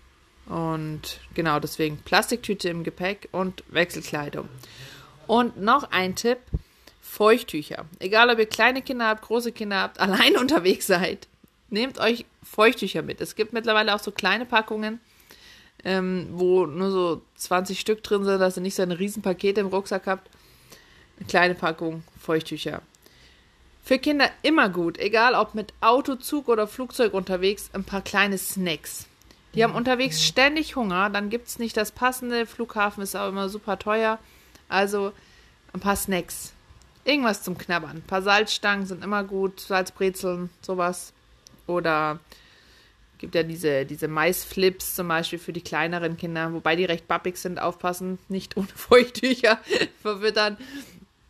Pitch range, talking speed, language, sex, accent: 165-215 Hz, 150 wpm, German, female, German